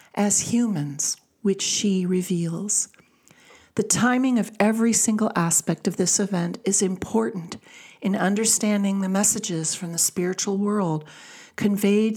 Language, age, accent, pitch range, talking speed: English, 50-69, American, 180-220 Hz, 125 wpm